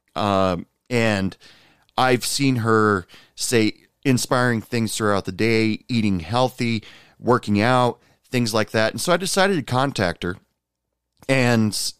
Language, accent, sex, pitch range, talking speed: English, American, male, 100-130 Hz, 130 wpm